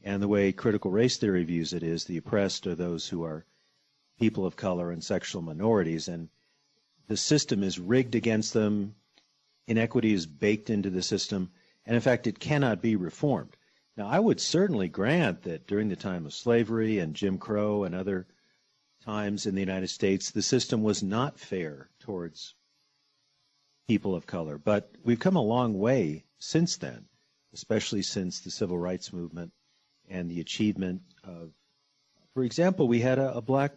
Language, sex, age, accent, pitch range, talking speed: English, male, 50-69, American, 95-125 Hz, 170 wpm